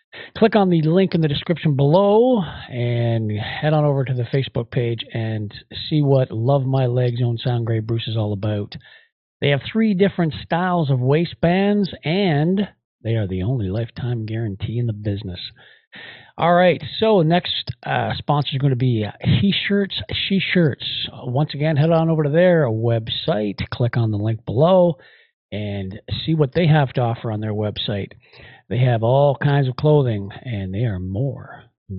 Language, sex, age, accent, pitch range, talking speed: English, male, 50-69, American, 110-150 Hz, 175 wpm